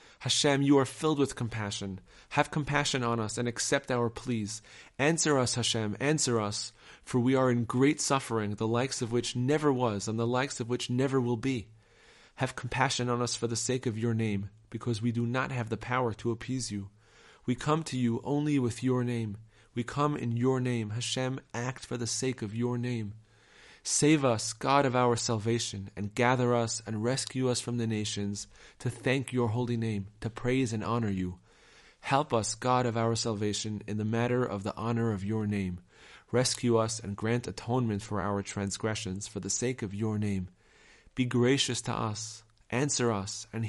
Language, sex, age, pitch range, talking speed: English, male, 30-49, 110-125 Hz, 195 wpm